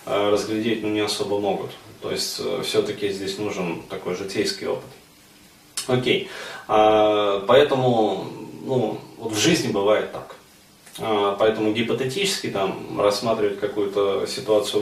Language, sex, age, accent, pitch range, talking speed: Russian, male, 20-39, native, 105-120 Hz, 115 wpm